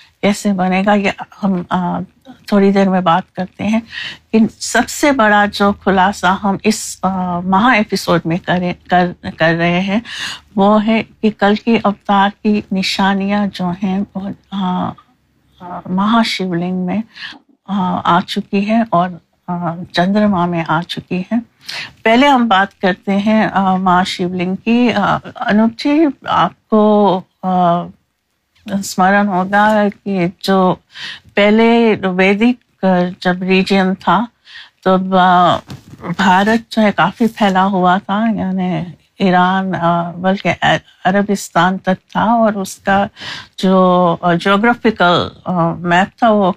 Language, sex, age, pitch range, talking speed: Urdu, female, 60-79, 180-205 Hz, 115 wpm